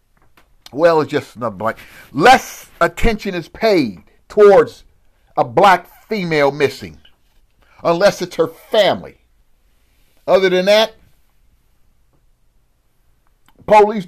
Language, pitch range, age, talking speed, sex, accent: English, 135-195 Hz, 50-69, 95 wpm, male, American